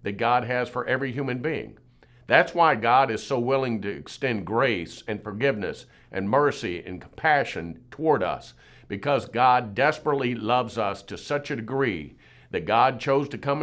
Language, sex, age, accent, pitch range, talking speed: English, male, 50-69, American, 105-135 Hz, 165 wpm